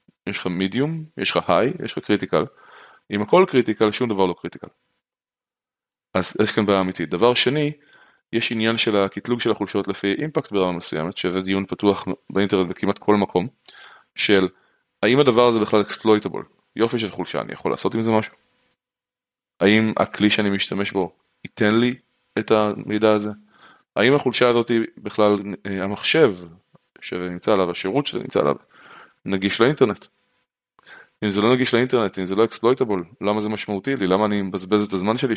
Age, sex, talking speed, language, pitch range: 20-39, male, 165 wpm, Hebrew, 95-110 Hz